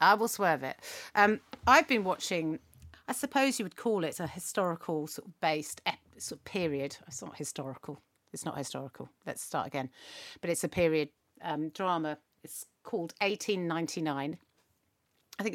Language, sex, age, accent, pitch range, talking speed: English, female, 40-59, British, 160-230 Hz, 165 wpm